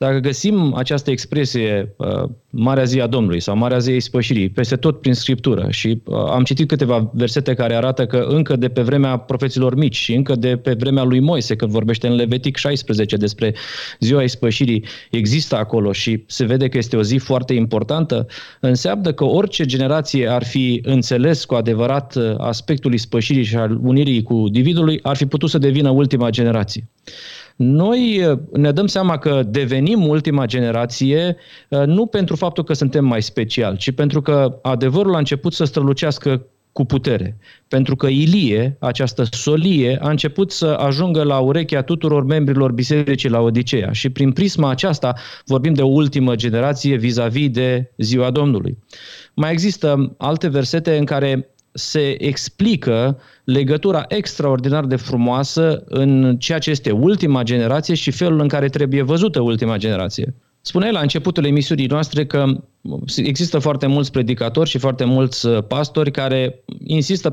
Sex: male